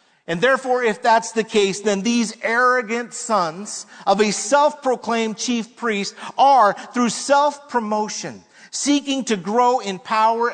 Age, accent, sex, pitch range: 40-59, American, male, 205-245 Hz